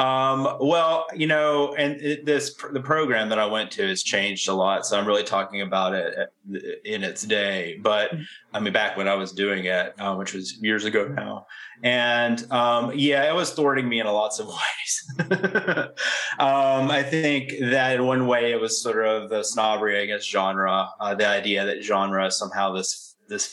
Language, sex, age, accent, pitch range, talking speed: English, male, 30-49, American, 100-130 Hz, 195 wpm